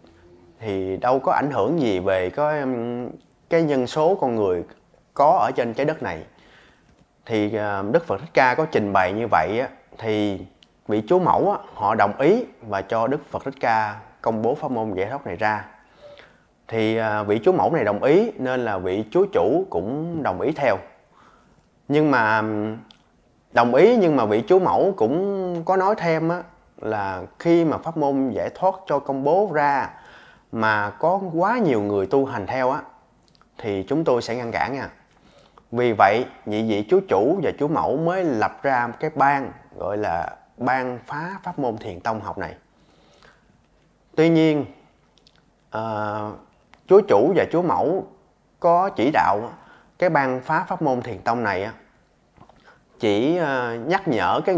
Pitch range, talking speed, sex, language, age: 105-160 Hz, 165 wpm, male, Vietnamese, 20-39